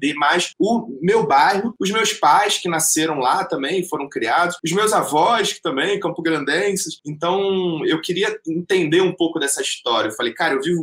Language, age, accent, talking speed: Portuguese, 20-39, Brazilian, 185 wpm